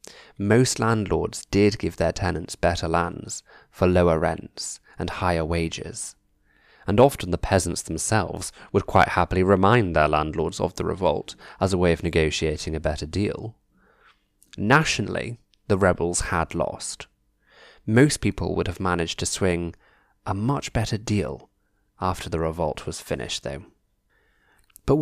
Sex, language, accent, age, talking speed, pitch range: male, English, British, 20-39, 140 wpm, 85-110 Hz